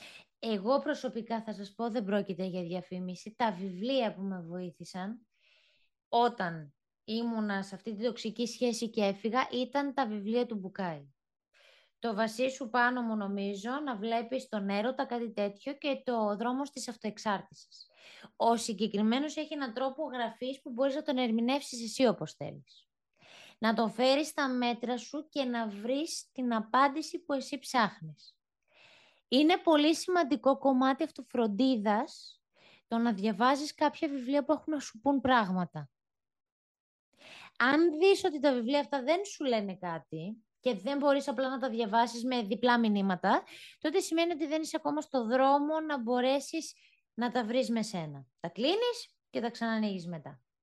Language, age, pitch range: Greek, 20-39, 210-280 Hz